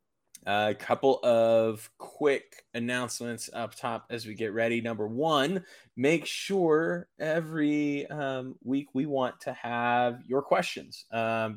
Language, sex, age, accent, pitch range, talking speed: English, male, 20-39, American, 105-130 Hz, 130 wpm